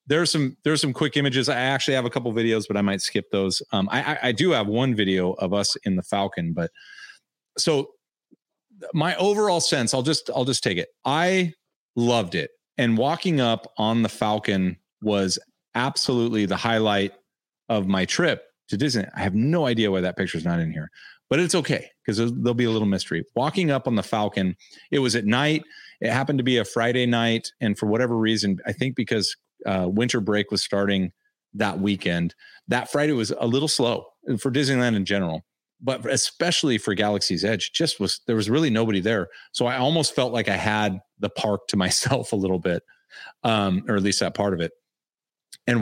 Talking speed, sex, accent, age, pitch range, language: 205 wpm, male, American, 30-49, 100-135 Hz, English